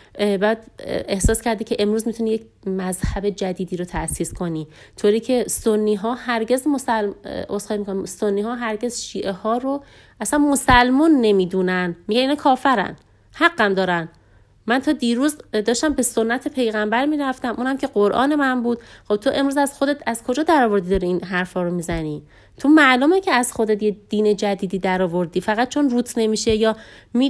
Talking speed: 165 wpm